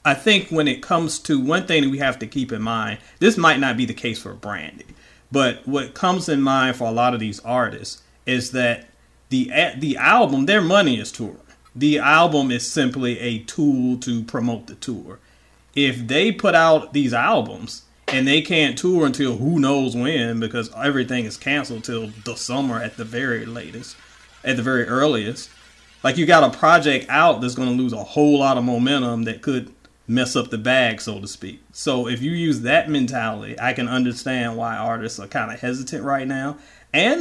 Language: English